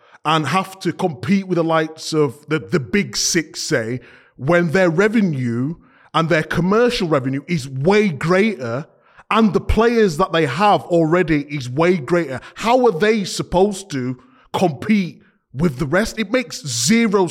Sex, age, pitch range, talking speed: male, 20-39, 140-195 Hz, 155 wpm